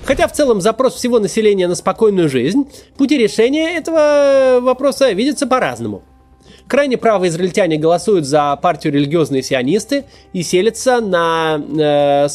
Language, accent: Russian, native